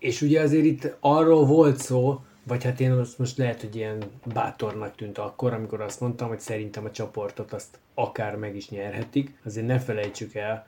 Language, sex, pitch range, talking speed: Hungarian, male, 110-130 Hz, 185 wpm